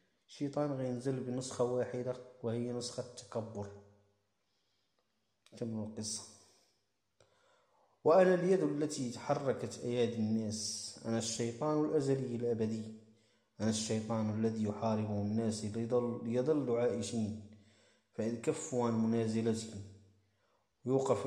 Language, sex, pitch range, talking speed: Arabic, male, 105-120 Hz, 85 wpm